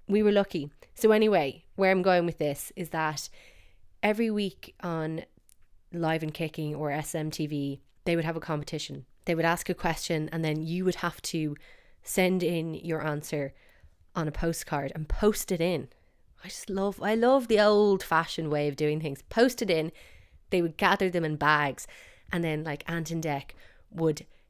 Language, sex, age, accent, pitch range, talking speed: English, female, 20-39, Irish, 150-180 Hz, 180 wpm